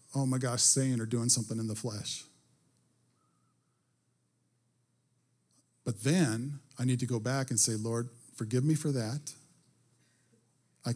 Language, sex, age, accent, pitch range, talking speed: English, male, 50-69, American, 115-135 Hz, 135 wpm